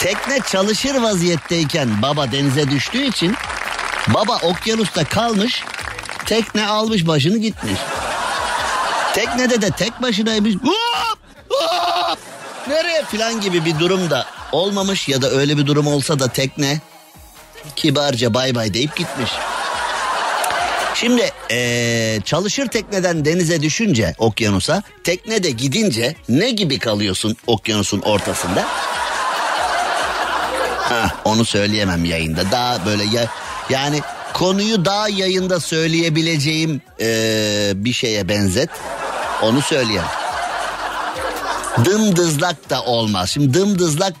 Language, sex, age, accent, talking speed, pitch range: Turkish, male, 50-69, native, 100 wpm, 120-200 Hz